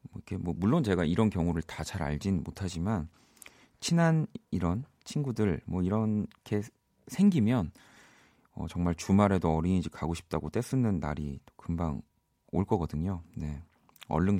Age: 40-59